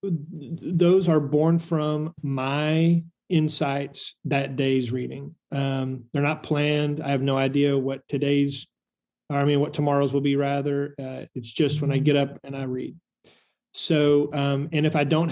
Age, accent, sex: 30-49, American, male